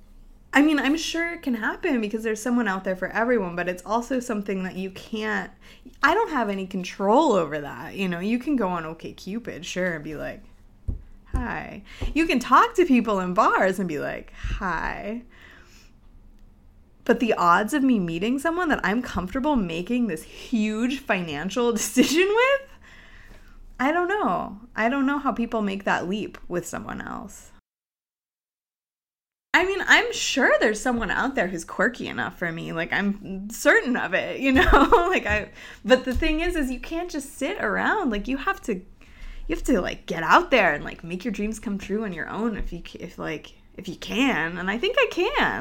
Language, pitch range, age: English, 195-280 Hz, 20-39